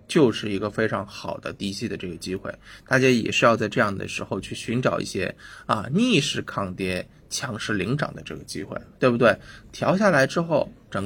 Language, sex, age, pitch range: Chinese, male, 20-39, 105-135 Hz